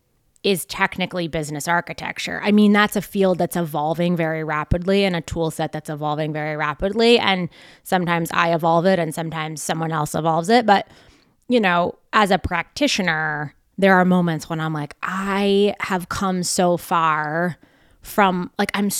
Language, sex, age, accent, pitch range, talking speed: English, female, 20-39, American, 165-200 Hz, 165 wpm